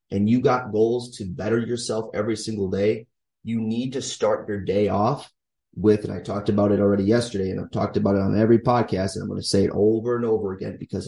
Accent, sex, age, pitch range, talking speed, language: American, male, 30-49, 105-120 Hz, 240 wpm, English